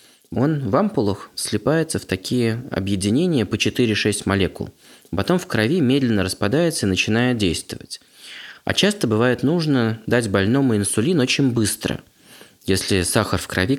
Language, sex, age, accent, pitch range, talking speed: Russian, male, 20-39, native, 95-120 Hz, 135 wpm